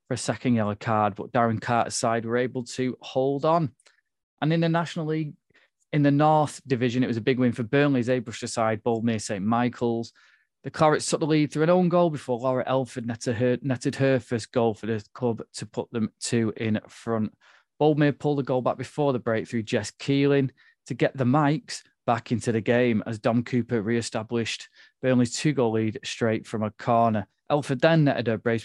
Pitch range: 115-135 Hz